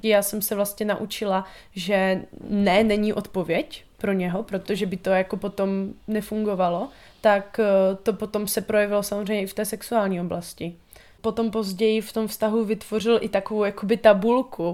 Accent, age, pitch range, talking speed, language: native, 20-39, 200-225 Hz, 155 wpm, Czech